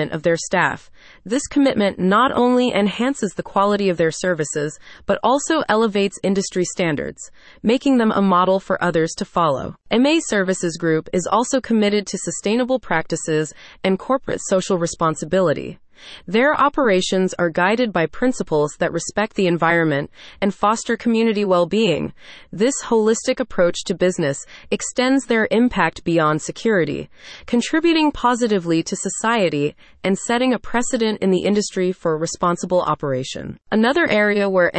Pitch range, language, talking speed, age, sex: 175-225 Hz, English, 140 wpm, 30-49, female